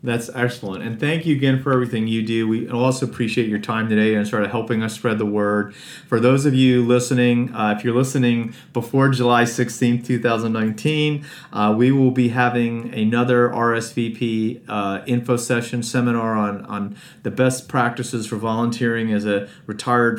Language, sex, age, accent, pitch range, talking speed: English, male, 40-59, American, 110-125 Hz, 170 wpm